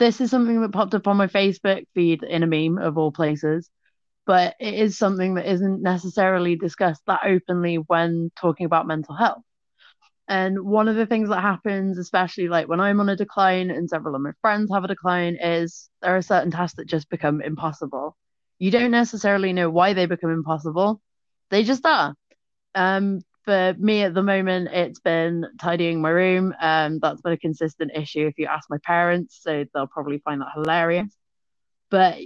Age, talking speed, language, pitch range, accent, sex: 20-39, 190 wpm, English, 165-195 Hz, British, female